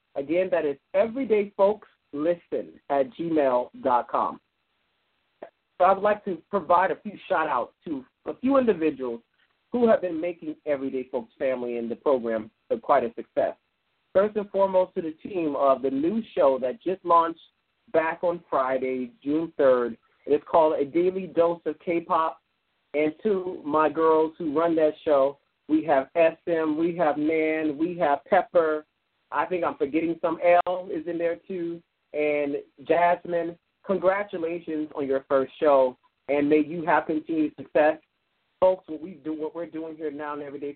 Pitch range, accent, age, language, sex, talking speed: 145-185 Hz, American, 40-59, English, male, 160 wpm